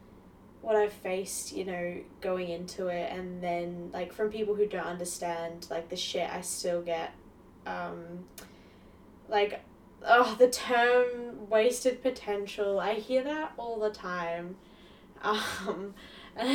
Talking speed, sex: 135 wpm, female